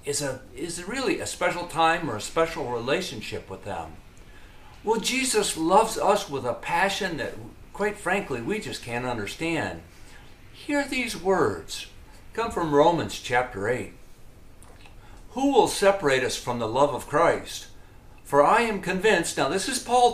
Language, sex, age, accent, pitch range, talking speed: English, male, 60-79, American, 110-180 Hz, 160 wpm